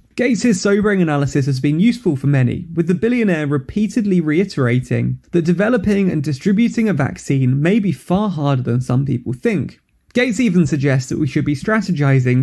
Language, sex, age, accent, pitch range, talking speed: English, male, 20-39, British, 140-200 Hz, 170 wpm